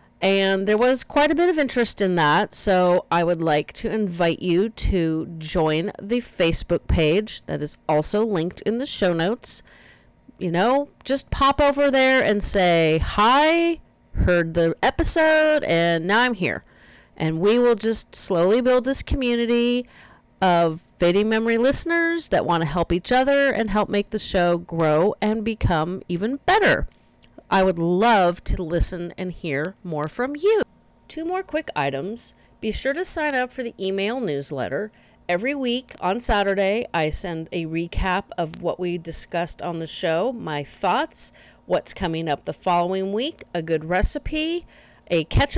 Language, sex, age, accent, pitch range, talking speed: English, female, 40-59, American, 170-260 Hz, 165 wpm